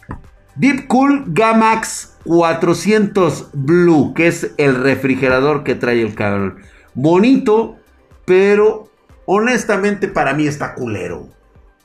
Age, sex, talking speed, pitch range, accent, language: 50-69, male, 100 wpm, 130-185 Hz, Mexican, Spanish